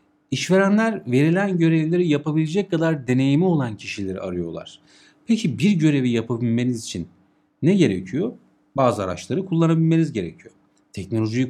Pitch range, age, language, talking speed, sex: 105-155 Hz, 50-69, Turkish, 110 wpm, male